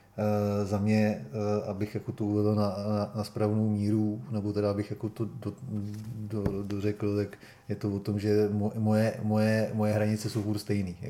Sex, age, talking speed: male, 30-49, 170 wpm